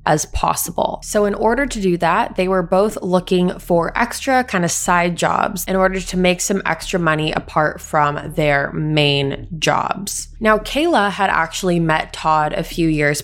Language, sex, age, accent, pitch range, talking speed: English, female, 20-39, American, 155-205 Hz, 175 wpm